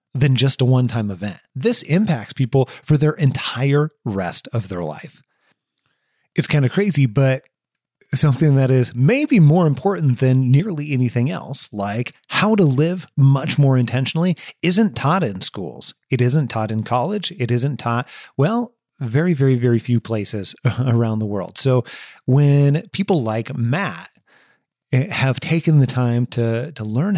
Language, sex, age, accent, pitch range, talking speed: English, male, 30-49, American, 115-145 Hz, 155 wpm